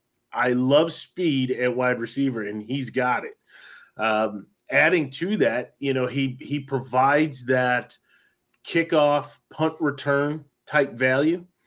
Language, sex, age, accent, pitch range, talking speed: English, male, 30-49, American, 130-150 Hz, 130 wpm